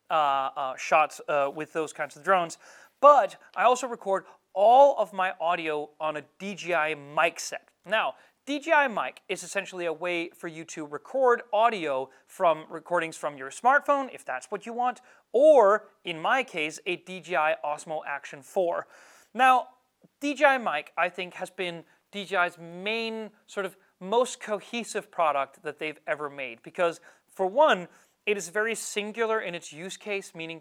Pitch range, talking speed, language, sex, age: 155-225 Hz, 165 wpm, Swedish, male, 30-49